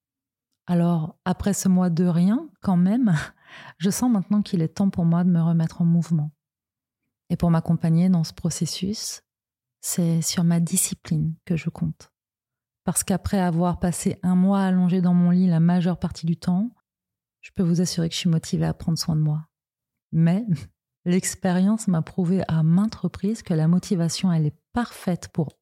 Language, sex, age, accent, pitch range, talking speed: French, female, 30-49, French, 155-180 Hz, 180 wpm